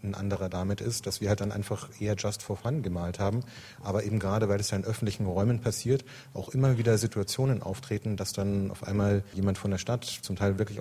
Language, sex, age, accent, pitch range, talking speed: German, male, 30-49, German, 95-115 Hz, 230 wpm